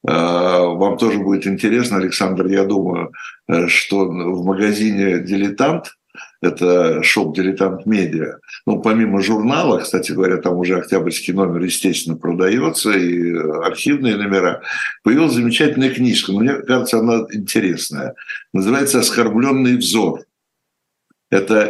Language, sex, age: Russian, male, 60-79